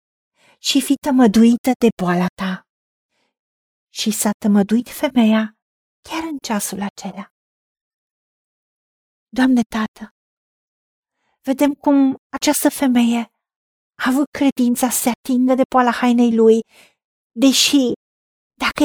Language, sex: Romanian, female